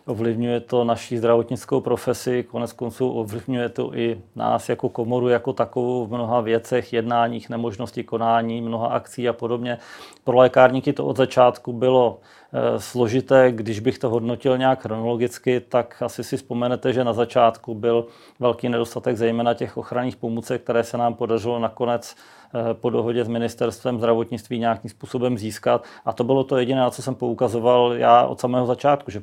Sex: male